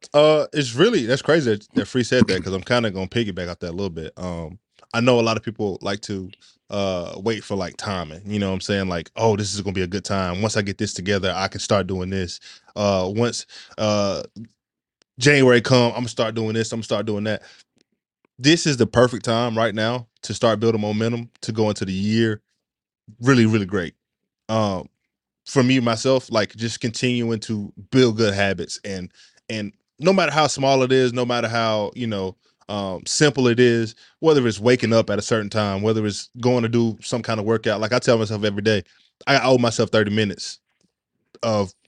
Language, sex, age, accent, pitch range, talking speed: English, male, 20-39, American, 100-120 Hz, 215 wpm